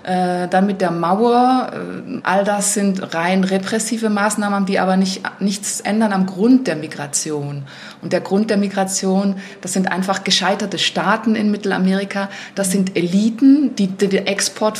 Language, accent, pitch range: German, German, 180-205 Hz